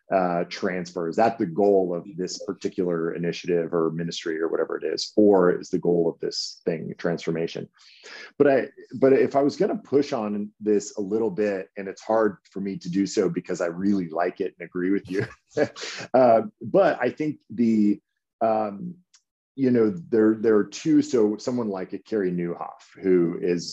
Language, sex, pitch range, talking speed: English, male, 90-110 Hz, 190 wpm